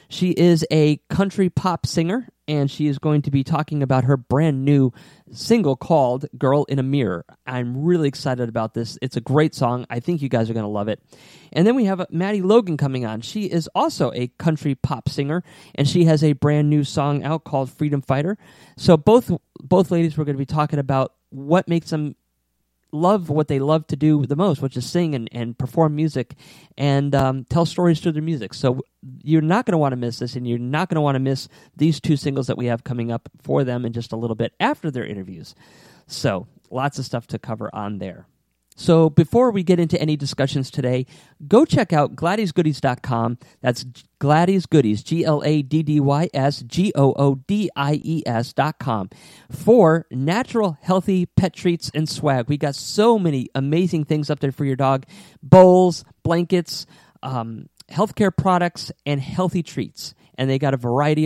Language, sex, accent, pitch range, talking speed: English, male, American, 130-170 Hz, 185 wpm